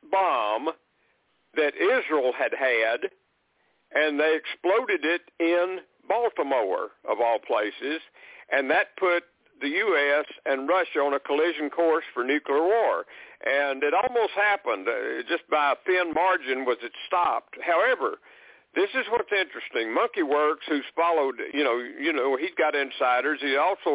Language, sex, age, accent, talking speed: English, male, 60-79, American, 150 wpm